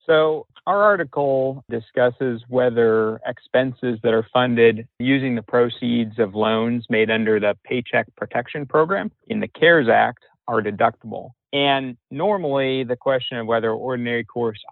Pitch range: 110-125 Hz